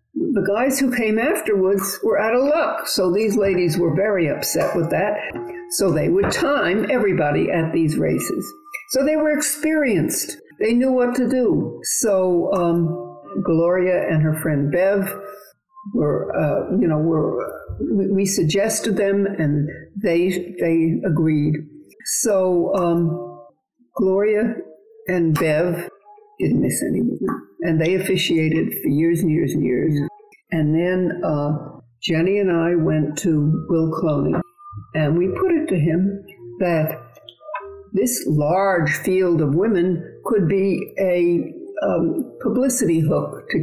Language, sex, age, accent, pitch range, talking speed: English, female, 60-79, American, 160-215 Hz, 140 wpm